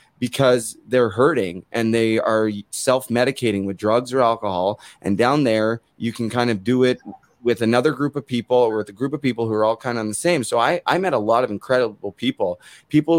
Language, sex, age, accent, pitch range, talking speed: English, male, 30-49, American, 105-130 Hz, 220 wpm